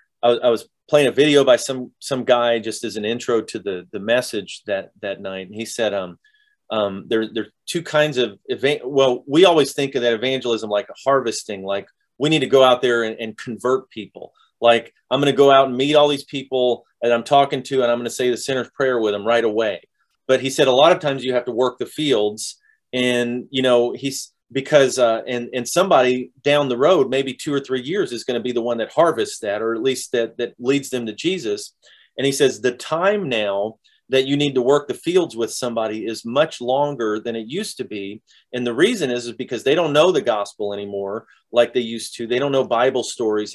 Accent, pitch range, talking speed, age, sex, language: American, 115-140 Hz, 235 wpm, 30-49, male, English